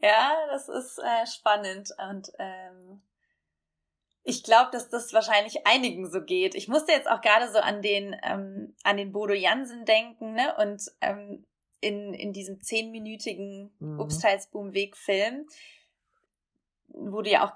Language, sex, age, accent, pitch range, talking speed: German, female, 20-39, German, 195-220 Hz, 145 wpm